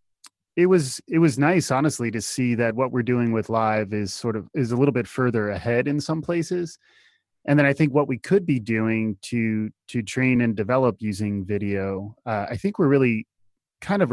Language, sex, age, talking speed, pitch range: English, male, 20-39, 210 wpm, 105-125 Hz